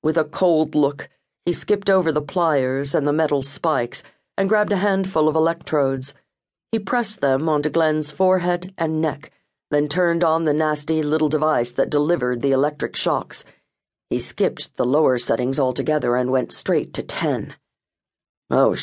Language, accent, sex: English, American, female